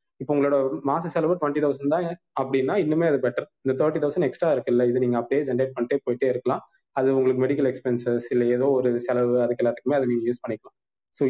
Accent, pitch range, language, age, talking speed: native, 125-145 Hz, Tamil, 20-39, 205 wpm